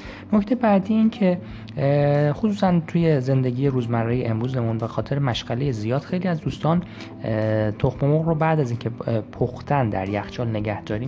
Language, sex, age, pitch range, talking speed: Persian, male, 20-39, 110-140 Hz, 145 wpm